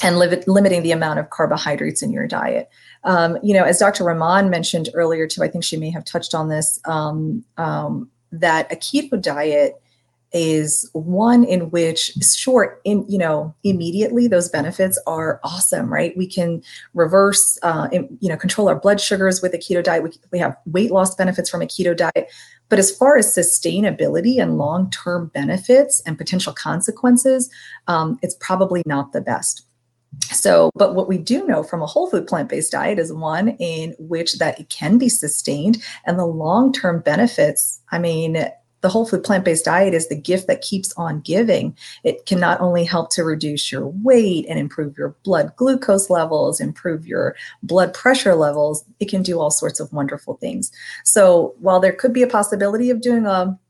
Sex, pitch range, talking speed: female, 165-205 Hz, 185 wpm